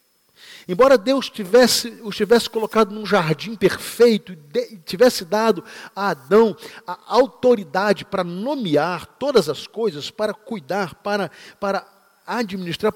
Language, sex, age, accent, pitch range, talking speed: Portuguese, male, 40-59, Brazilian, 175-235 Hz, 115 wpm